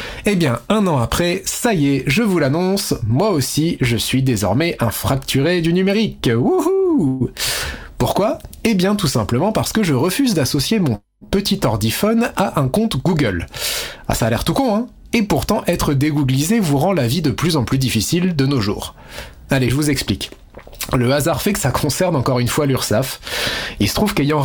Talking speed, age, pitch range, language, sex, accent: 190 wpm, 30-49, 120-175 Hz, French, male, French